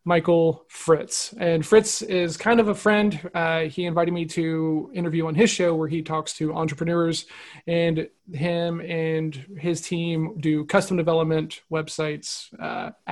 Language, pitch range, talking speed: English, 160-190 Hz, 150 wpm